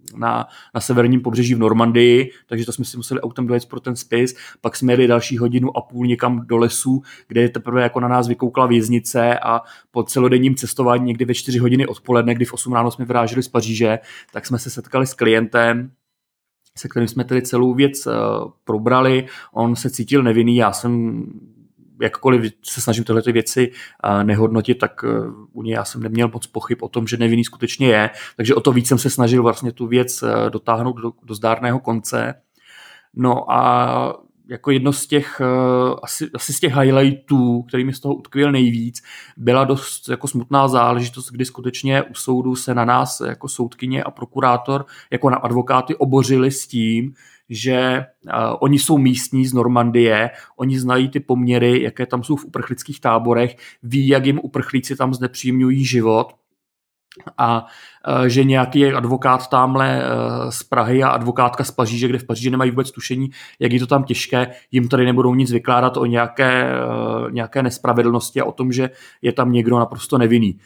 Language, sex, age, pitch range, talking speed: Czech, male, 30-49, 120-130 Hz, 175 wpm